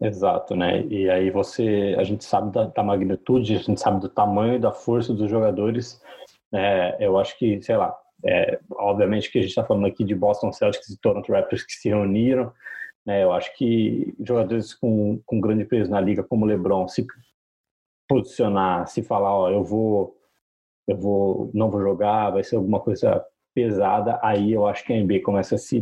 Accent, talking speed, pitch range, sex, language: Brazilian, 195 wpm, 100-115 Hz, male, Portuguese